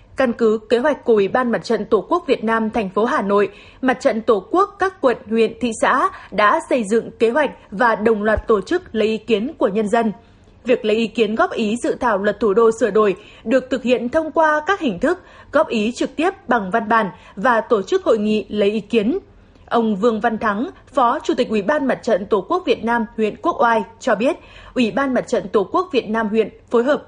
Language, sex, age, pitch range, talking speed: Vietnamese, female, 20-39, 220-280 Hz, 240 wpm